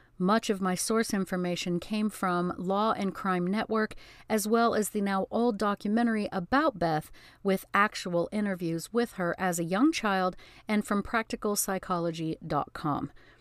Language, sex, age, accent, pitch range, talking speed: English, female, 50-69, American, 175-225 Hz, 145 wpm